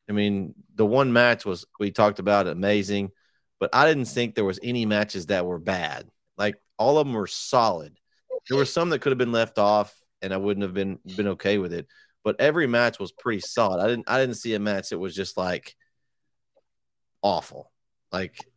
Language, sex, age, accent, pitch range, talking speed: English, male, 30-49, American, 95-110 Hz, 210 wpm